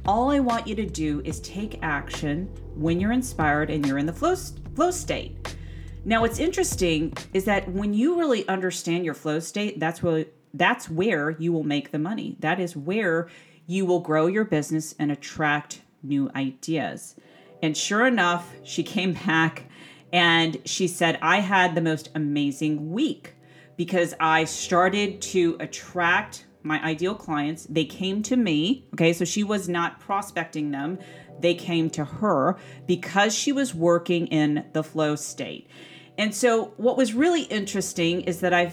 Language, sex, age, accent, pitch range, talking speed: English, female, 40-59, American, 155-195 Hz, 165 wpm